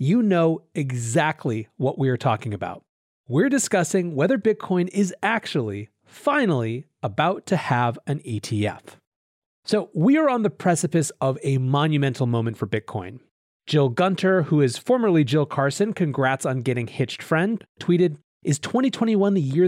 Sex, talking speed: male, 150 wpm